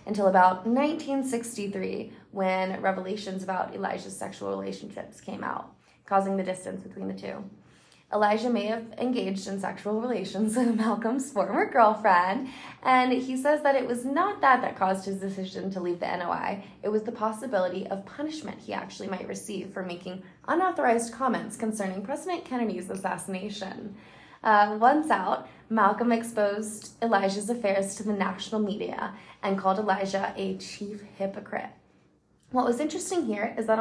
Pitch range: 195-235 Hz